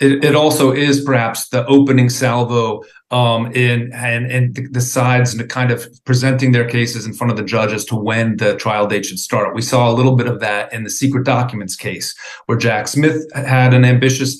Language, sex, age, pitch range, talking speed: English, male, 40-59, 120-135 Hz, 215 wpm